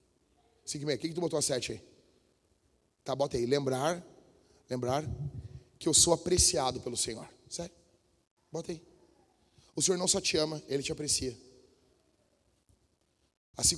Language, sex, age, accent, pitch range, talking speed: Portuguese, male, 30-49, Brazilian, 140-190 Hz, 135 wpm